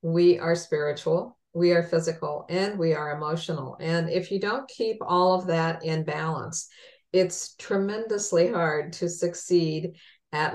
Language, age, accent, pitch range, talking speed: English, 50-69, American, 165-185 Hz, 150 wpm